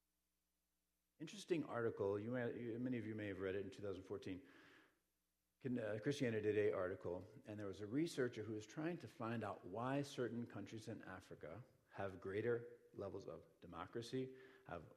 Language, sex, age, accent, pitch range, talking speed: English, male, 40-59, American, 100-145 Hz, 150 wpm